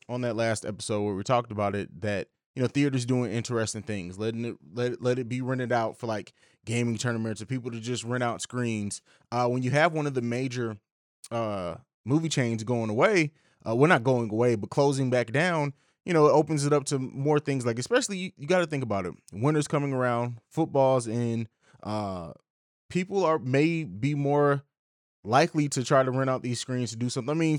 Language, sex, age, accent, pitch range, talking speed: English, male, 20-39, American, 115-145 Hz, 220 wpm